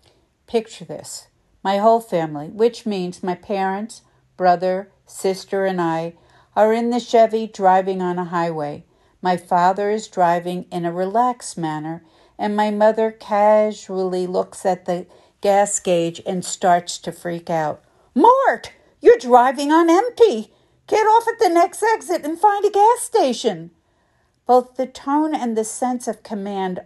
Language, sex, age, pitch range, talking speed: English, female, 50-69, 175-230 Hz, 150 wpm